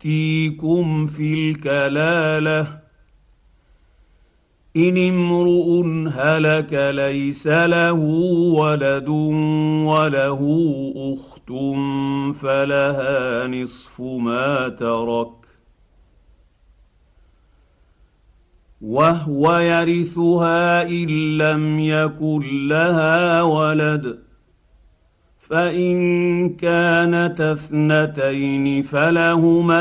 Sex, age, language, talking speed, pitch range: male, 50-69, Arabic, 50 wpm, 130-155 Hz